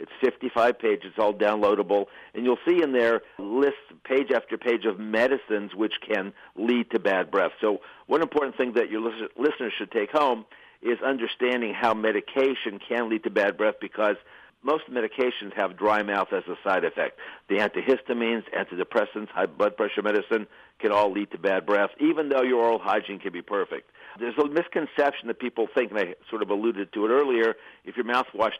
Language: English